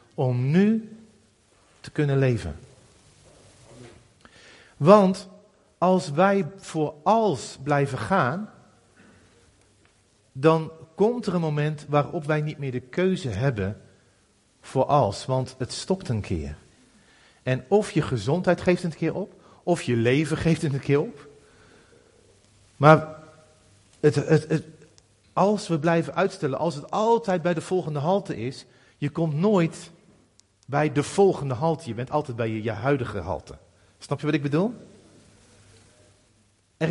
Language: Dutch